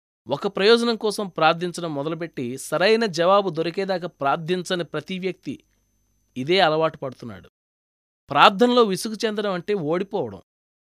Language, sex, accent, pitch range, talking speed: Telugu, male, native, 145-210 Hz, 105 wpm